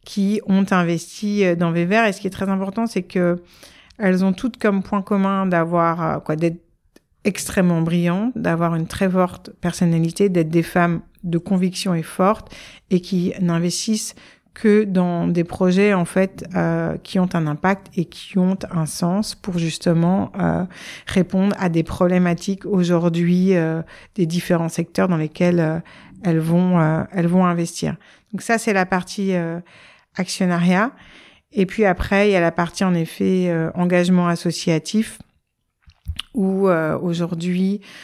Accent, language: French, French